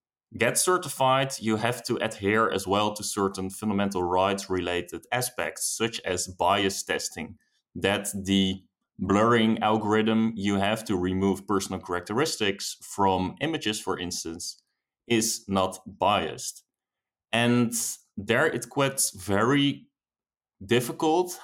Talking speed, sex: 110 wpm, male